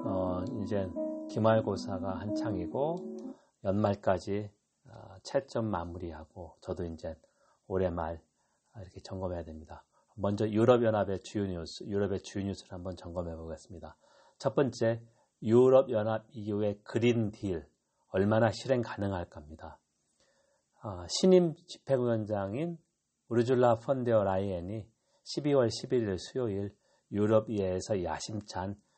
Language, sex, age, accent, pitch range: Korean, male, 40-59, native, 95-120 Hz